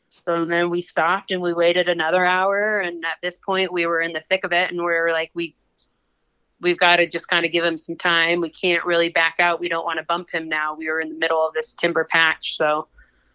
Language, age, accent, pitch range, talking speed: English, 20-39, American, 160-175 Hz, 255 wpm